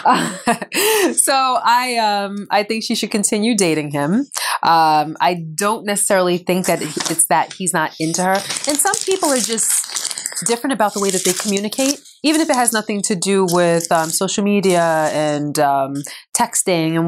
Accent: American